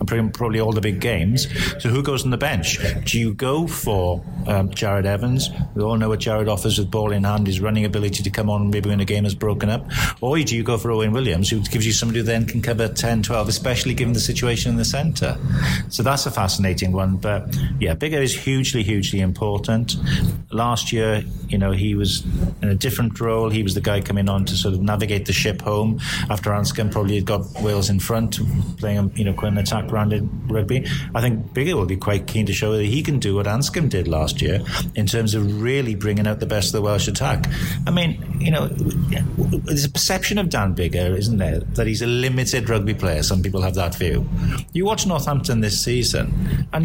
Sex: male